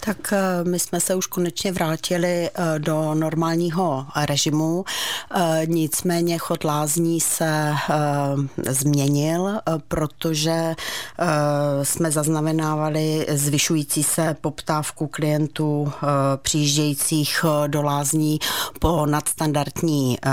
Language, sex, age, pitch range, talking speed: Czech, female, 40-59, 145-165 Hz, 80 wpm